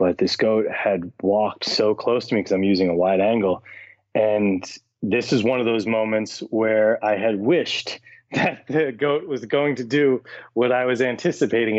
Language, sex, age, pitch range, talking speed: English, male, 30-49, 100-125 Hz, 190 wpm